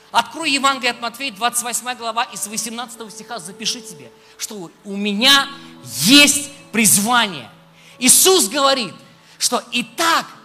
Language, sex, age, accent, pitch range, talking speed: Russian, male, 20-39, native, 230-290 Hz, 125 wpm